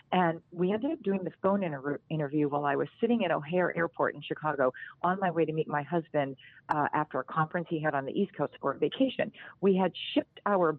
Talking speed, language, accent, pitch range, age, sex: 235 wpm, English, American, 150-195 Hz, 40-59, female